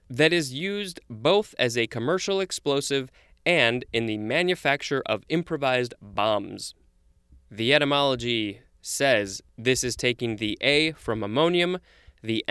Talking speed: 125 wpm